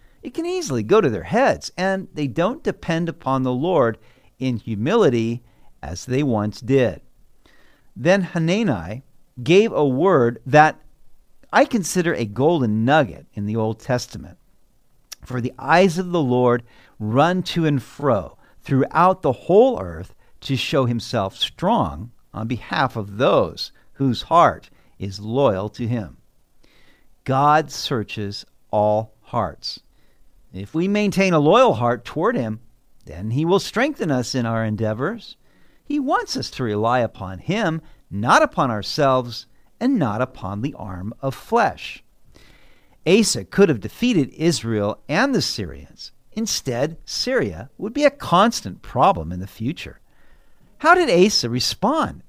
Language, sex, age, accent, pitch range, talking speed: English, male, 50-69, American, 115-175 Hz, 140 wpm